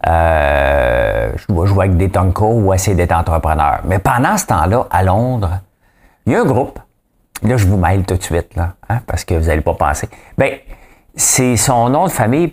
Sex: male